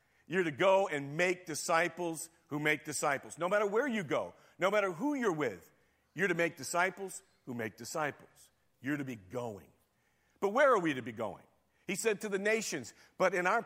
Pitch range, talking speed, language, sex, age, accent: 165-210 Hz, 200 wpm, English, male, 50-69, American